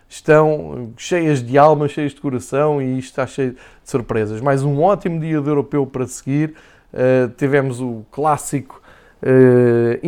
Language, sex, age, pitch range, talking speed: Portuguese, male, 20-39, 130-155 Hz, 150 wpm